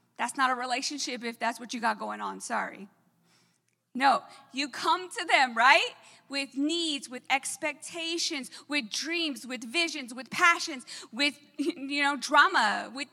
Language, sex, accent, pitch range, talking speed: English, female, American, 290-350 Hz, 150 wpm